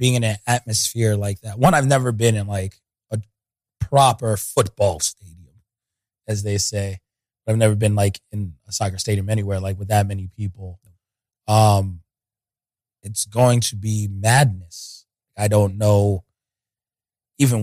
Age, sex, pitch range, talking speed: 20-39, male, 105-120 Hz, 145 wpm